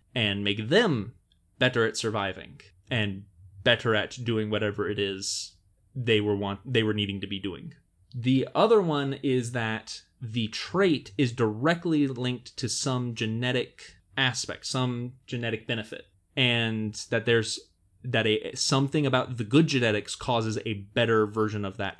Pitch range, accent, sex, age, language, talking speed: 105-135 Hz, American, male, 20-39, English, 150 wpm